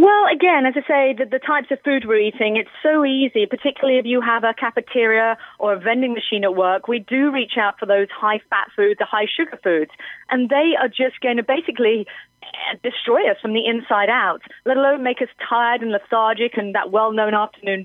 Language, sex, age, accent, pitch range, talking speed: English, female, 30-49, British, 215-280 Hz, 210 wpm